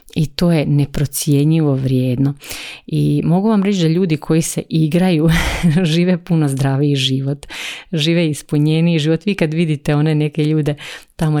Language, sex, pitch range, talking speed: Croatian, female, 140-165 Hz, 145 wpm